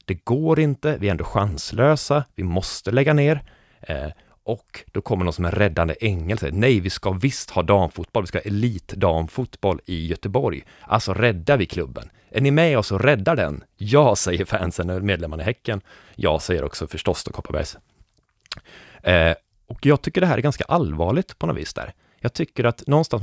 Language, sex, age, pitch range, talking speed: Swedish, male, 30-49, 90-125 Hz, 190 wpm